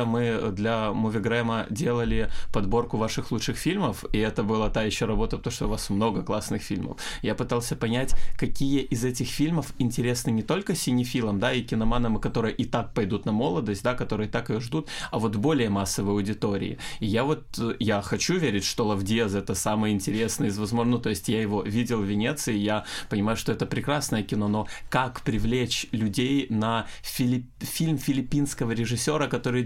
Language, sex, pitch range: Russian, male, 105-135 Hz